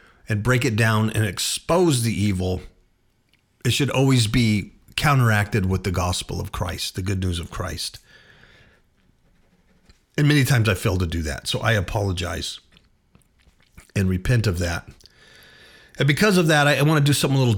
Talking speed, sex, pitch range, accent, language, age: 170 wpm, male, 100-125 Hz, American, English, 50-69